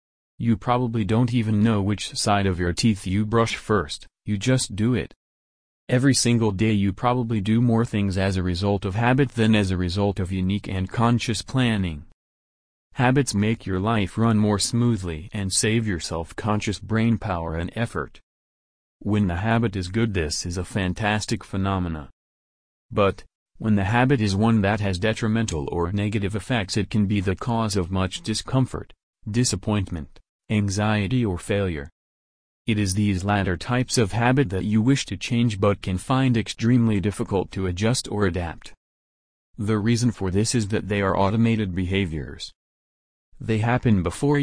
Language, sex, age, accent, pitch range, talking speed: English, male, 40-59, American, 95-115 Hz, 165 wpm